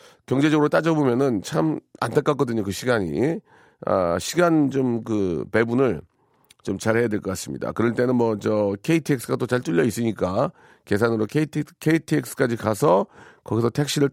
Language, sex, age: Korean, male, 40-59